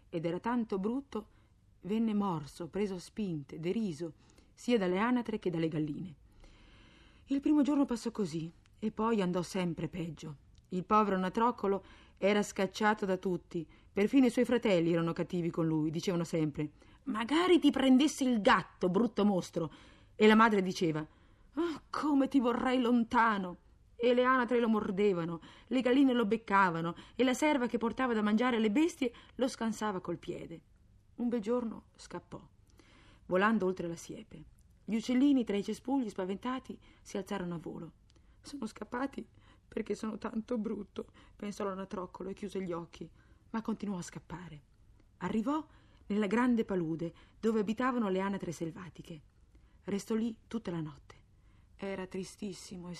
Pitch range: 170-235 Hz